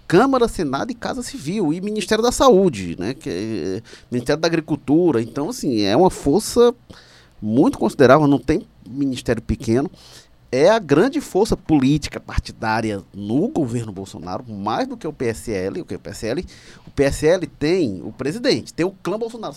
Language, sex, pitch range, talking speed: Portuguese, male, 110-165 Hz, 150 wpm